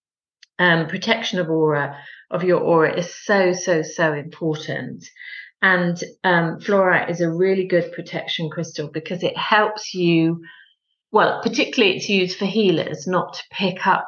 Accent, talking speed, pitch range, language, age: British, 150 wpm, 155-185 Hz, English, 40-59